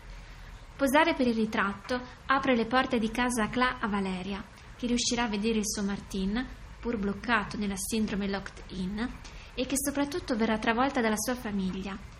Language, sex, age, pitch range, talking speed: Italian, female, 20-39, 215-245 Hz, 165 wpm